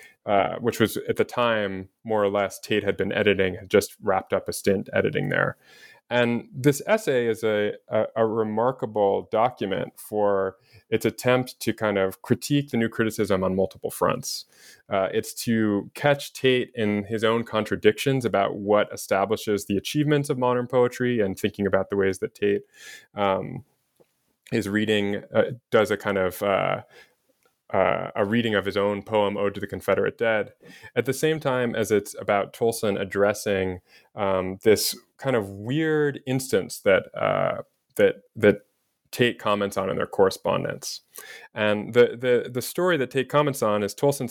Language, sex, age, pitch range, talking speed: English, male, 20-39, 100-125 Hz, 170 wpm